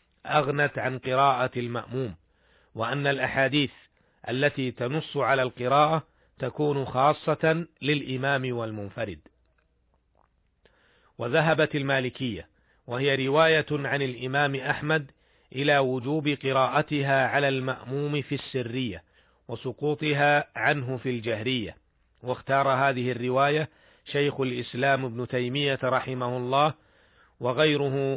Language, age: Arabic, 40-59